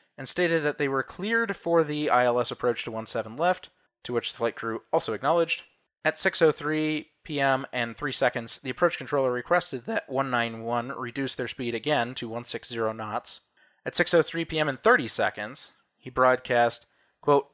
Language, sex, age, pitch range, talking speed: English, male, 20-39, 125-160 Hz, 165 wpm